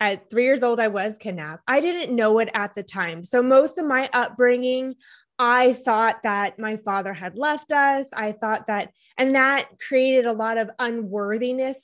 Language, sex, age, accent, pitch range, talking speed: English, female, 20-39, American, 215-255 Hz, 190 wpm